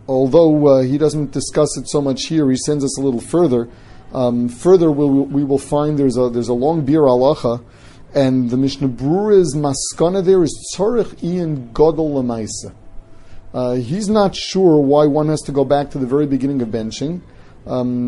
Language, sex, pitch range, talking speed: English, male, 125-155 Hz, 180 wpm